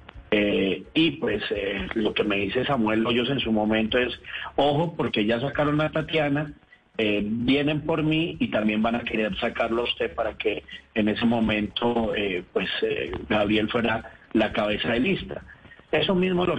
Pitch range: 110-130 Hz